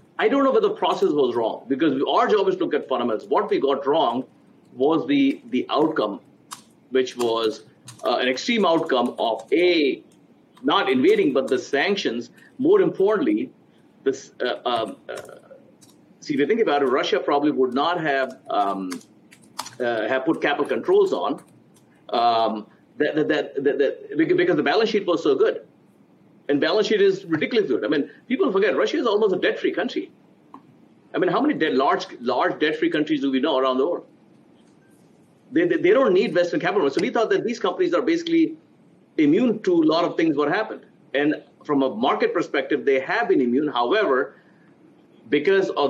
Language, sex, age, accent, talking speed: English, male, 50-69, Indian, 185 wpm